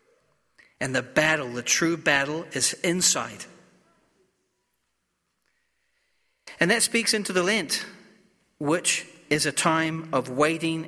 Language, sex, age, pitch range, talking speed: English, male, 40-59, 135-180 Hz, 110 wpm